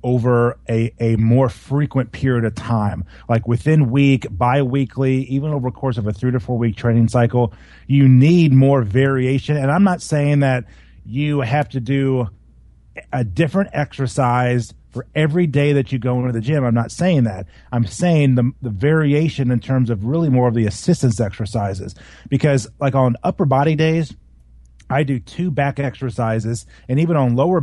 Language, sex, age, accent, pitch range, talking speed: English, male, 30-49, American, 115-140 Hz, 180 wpm